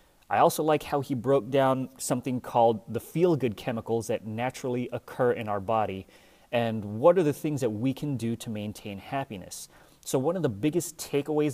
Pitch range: 110-135 Hz